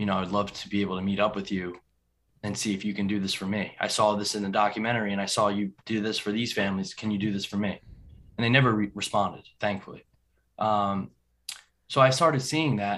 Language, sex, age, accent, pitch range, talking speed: English, male, 20-39, American, 100-115 Hz, 250 wpm